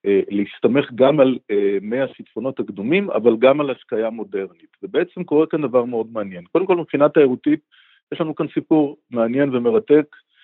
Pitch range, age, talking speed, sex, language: 110-155 Hz, 50-69, 155 wpm, male, Hebrew